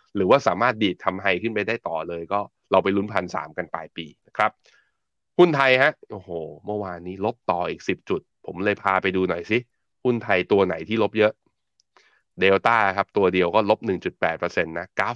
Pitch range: 95-115 Hz